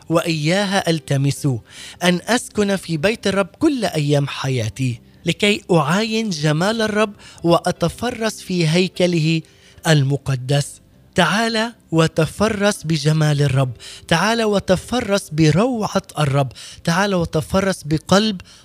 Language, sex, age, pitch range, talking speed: Arabic, male, 20-39, 150-200 Hz, 95 wpm